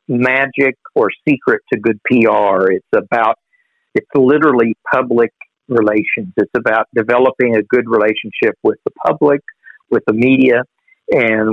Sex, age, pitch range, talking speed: male, 50-69, 110-130 Hz, 130 wpm